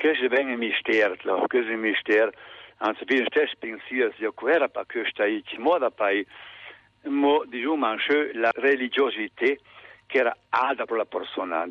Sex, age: male, 60-79